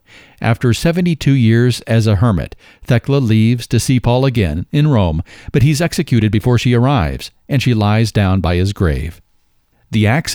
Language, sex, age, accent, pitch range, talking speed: English, male, 50-69, American, 100-130 Hz, 170 wpm